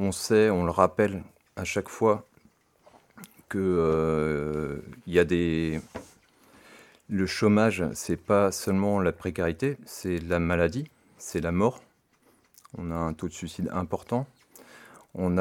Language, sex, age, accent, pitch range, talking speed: French, male, 30-49, French, 85-105 Hz, 130 wpm